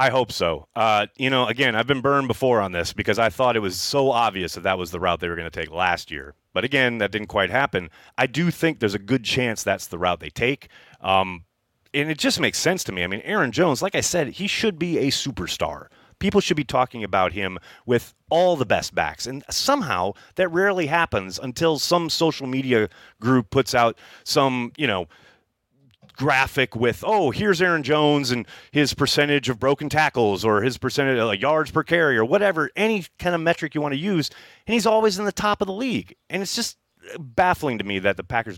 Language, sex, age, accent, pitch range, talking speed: English, male, 30-49, American, 105-160 Hz, 225 wpm